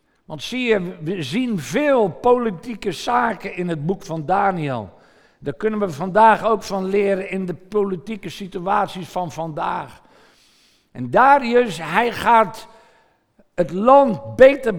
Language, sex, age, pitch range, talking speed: Dutch, male, 50-69, 180-245 Hz, 135 wpm